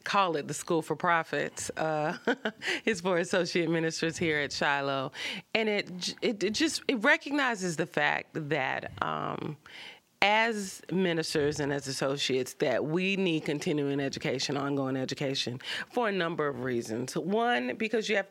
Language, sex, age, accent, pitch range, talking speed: English, female, 30-49, American, 145-195 Hz, 150 wpm